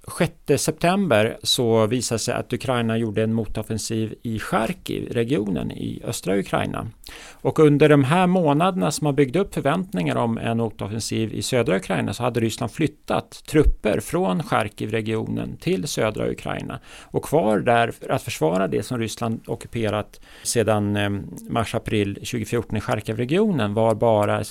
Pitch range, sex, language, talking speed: 110-140 Hz, male, Swedish, 140 wpm